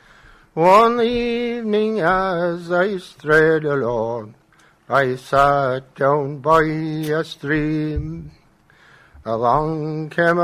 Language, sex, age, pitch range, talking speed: English, male, 60-79, 155-235 Hz, 80 wpm